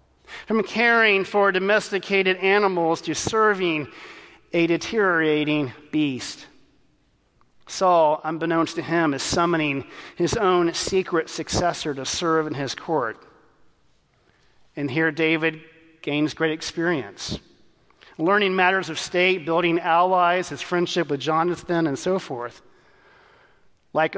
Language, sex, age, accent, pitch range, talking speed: English, male, 40-59, American, 155-180 Hz, 110 wpm